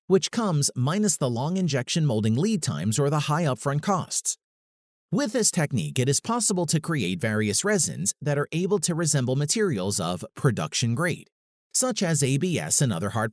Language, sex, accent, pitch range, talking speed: English, male, American, 130-185 Hz, 175 wpm